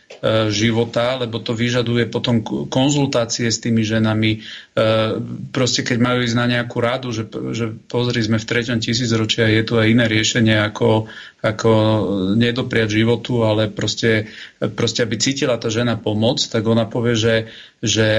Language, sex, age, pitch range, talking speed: Slovak, male, 40-59, 110-120 Hz, 150 wpm